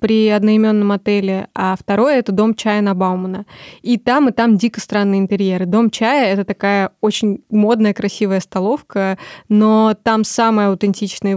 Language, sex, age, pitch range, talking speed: Russian, female, 20-39, 195-225 Hz, 155 wpm